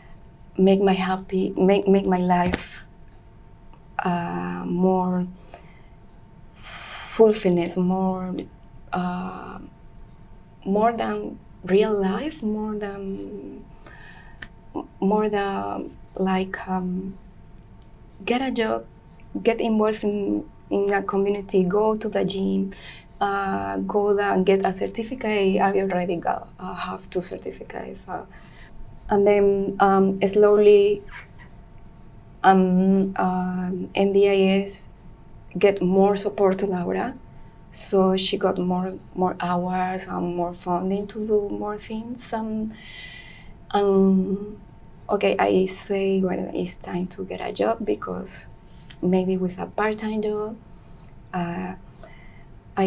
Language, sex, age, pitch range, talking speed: English, female, 20-39, 180-200 Hz, 110 wpm